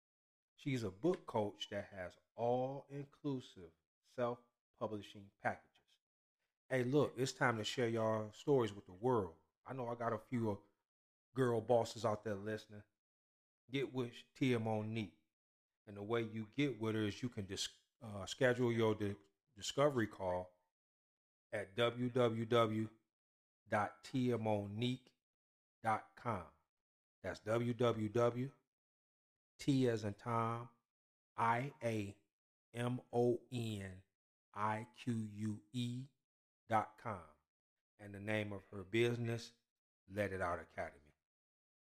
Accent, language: American, English